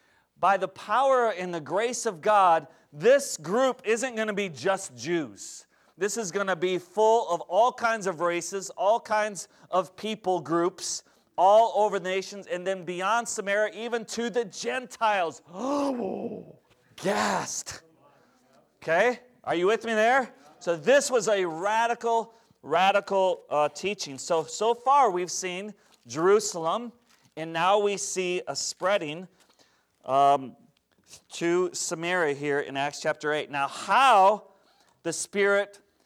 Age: 40-59